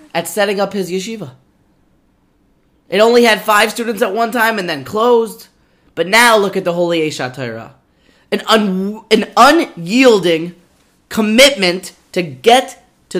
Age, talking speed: 20-39, 135 wpm